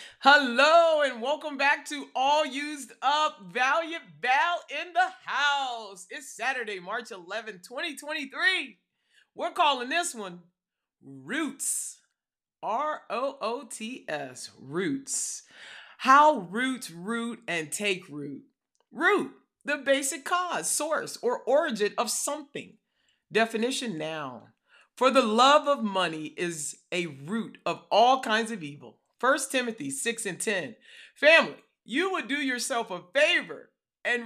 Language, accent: English, American